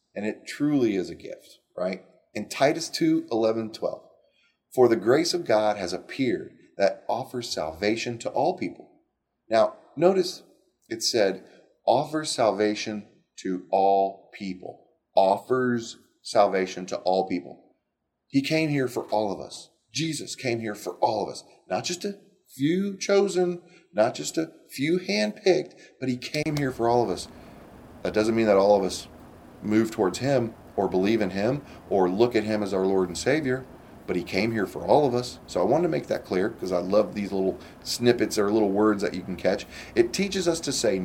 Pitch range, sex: 95-155 Hz, male